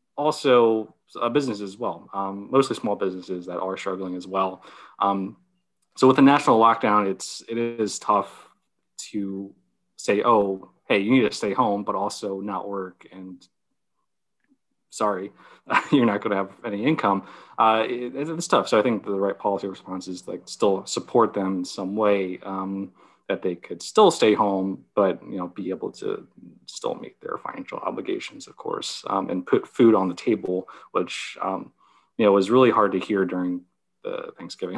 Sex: male